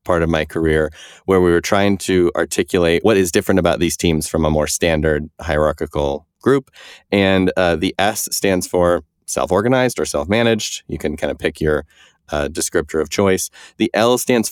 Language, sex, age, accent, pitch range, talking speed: English, male, 30-49, American, 80-95 Hz, 180 wpm